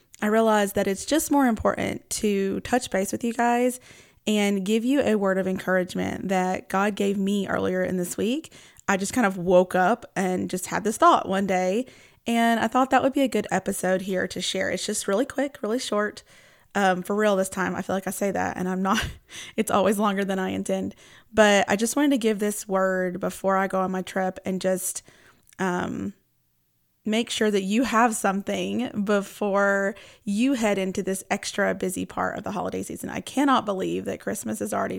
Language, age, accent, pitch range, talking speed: English, 20-39, American, 190-225 Hz, 210 wpm